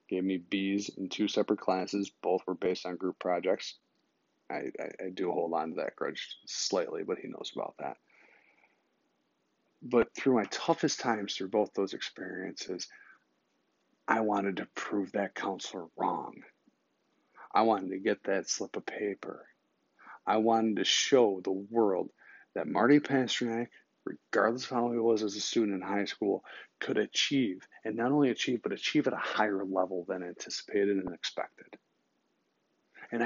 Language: English